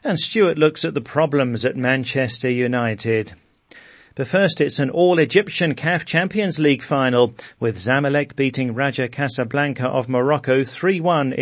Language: English